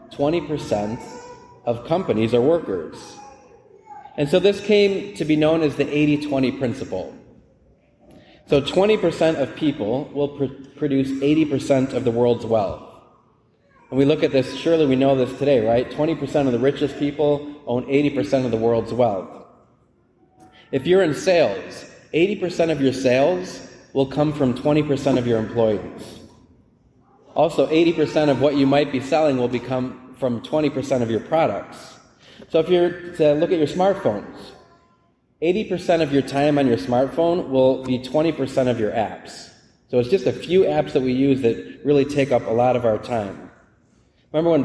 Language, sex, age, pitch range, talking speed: English, male, 30-49, 125-150 Hz, 160 wpm